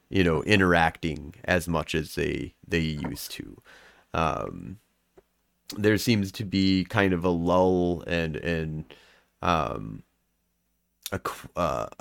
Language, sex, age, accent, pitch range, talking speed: English, male, 30-49, American, 90-105 Hz, 120 wpm